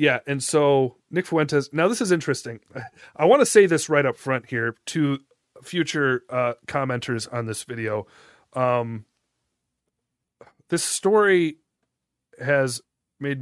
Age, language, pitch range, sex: 30-49, English, 120-145 Hz, male